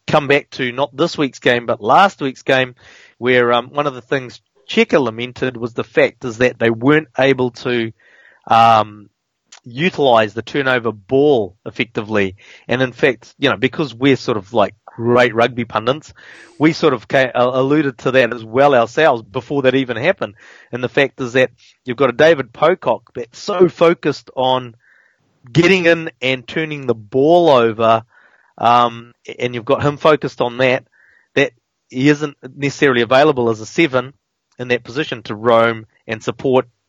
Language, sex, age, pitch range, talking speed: English, male, 30-49, 120-145 Hz, 170 wpm